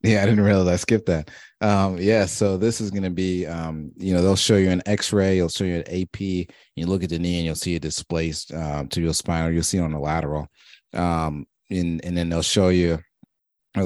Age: 30-49